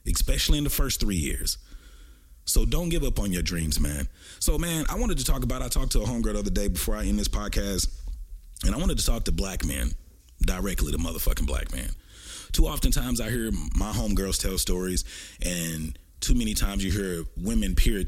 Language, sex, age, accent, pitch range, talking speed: English, male, 30-49, American, 75-100 Hz, 210 wpm